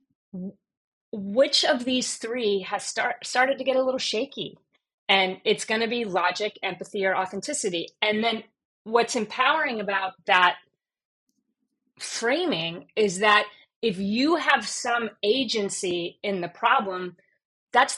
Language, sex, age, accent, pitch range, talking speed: English, female, 30-49, American, 185-225 Hz, 125 wpm